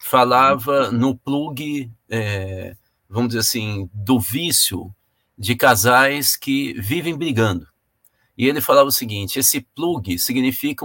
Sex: male